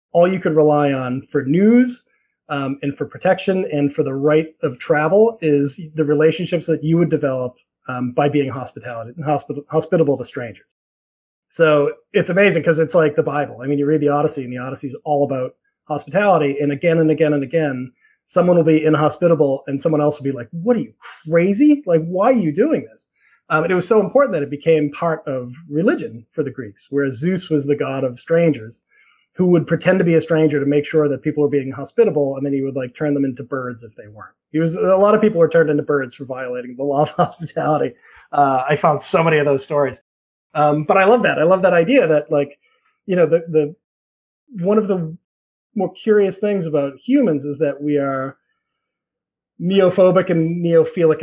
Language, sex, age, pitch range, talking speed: English, male, 30-49, 140-175 Hz, 215 wpm